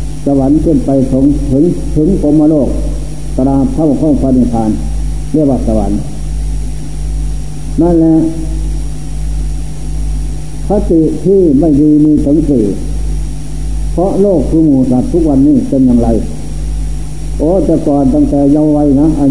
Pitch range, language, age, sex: 135-160 Hz, Thai, 60-79, male